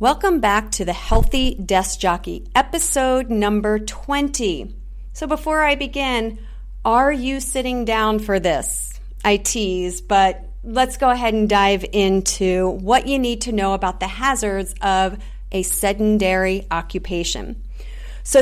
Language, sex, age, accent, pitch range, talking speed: English, female, 40-59, American, 195-245 Hz, 135 wpm